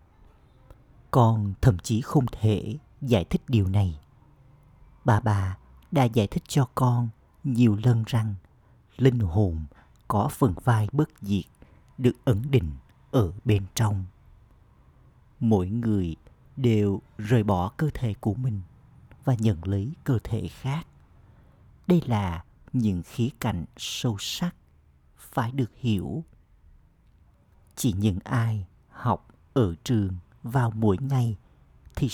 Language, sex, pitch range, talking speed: Vietnamese, male, 95-130 Hz, 125 wpm